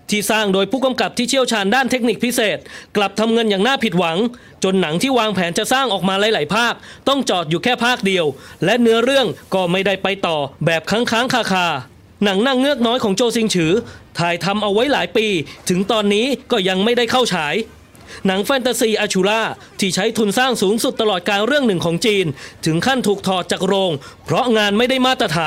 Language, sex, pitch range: English, male, 180-235 Hz